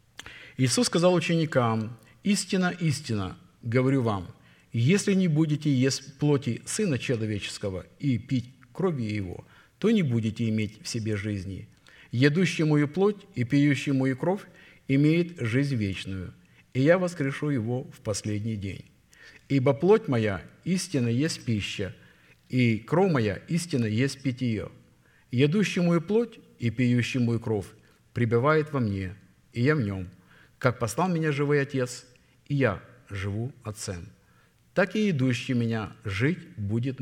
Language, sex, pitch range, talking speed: Russian, male, 110-150 Hz, 135 wpm